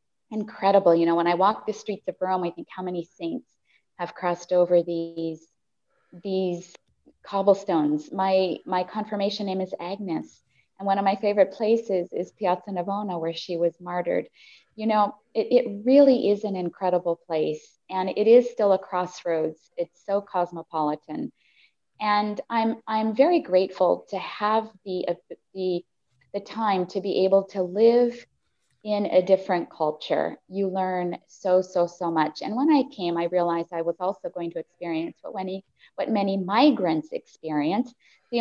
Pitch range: 175-220 Hz